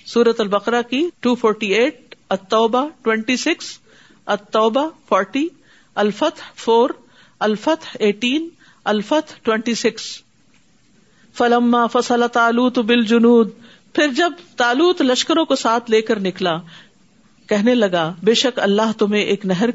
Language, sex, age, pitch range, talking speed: Urdu, female, 50-69, 190-245 Hz, 105 wpm